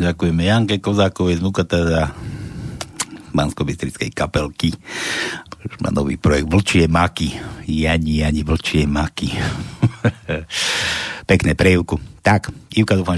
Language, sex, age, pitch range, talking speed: Slovak, male, 60-79, 95-145 Hz, 105 wpm